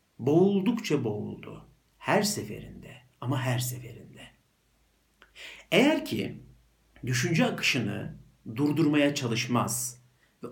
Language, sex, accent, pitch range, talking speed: Turkish, male, native, 110-175 Hz, 80 wpm